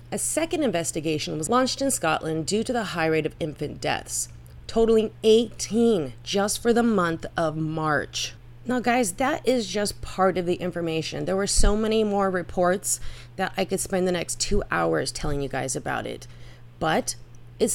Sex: female